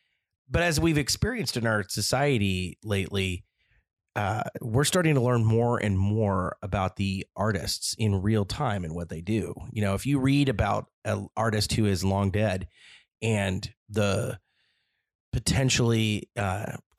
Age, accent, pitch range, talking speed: 30-49, American, 100-115 Hz, 150 wpm